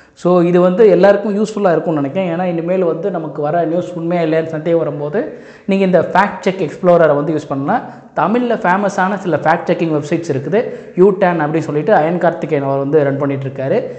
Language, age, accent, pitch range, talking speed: Tamil, 20-39, native, 160-195 Hz, 175 wpm